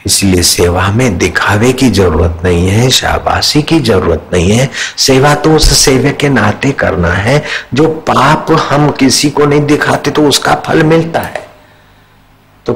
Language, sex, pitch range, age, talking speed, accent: Hindi, male, 95-135 Hz, 50-69, 160 wpm, native